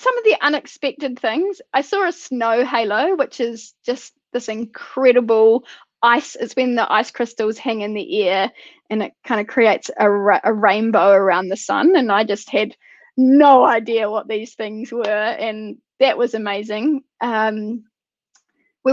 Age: 10-29